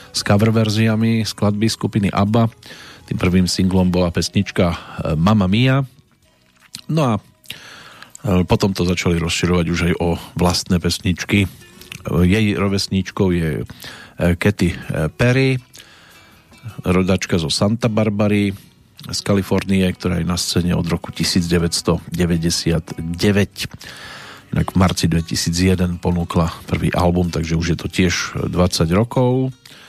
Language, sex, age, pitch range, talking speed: Slovak, male, 40-59, 90-110 Hz, 110 wpm